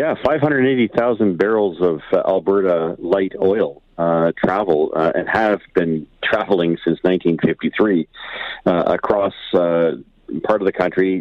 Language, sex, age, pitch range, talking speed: English, male, 40-59, 80-95 Hz, 125 wpm